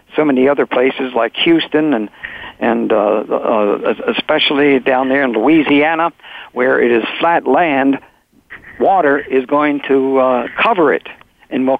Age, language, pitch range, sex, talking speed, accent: 60-79, English, 130-155 Hz, male, 145 wpm, American